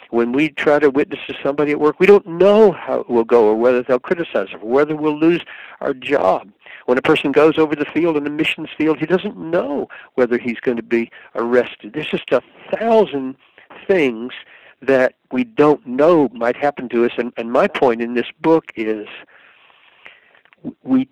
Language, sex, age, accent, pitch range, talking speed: English, male, 60-79, American, 120-155 Hz, 195 wpm